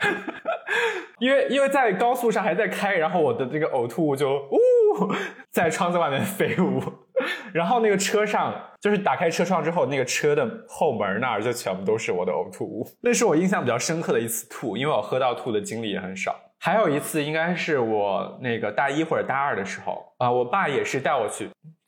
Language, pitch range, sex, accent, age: Chinese, 155-245 Hz, male, native, 20-39